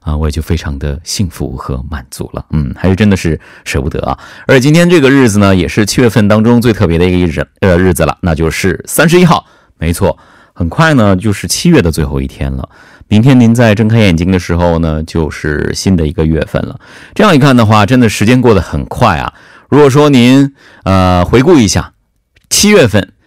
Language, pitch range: Korean, 85-120 Hz